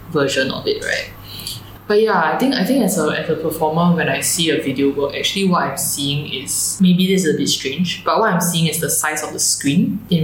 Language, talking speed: English, 250 wpm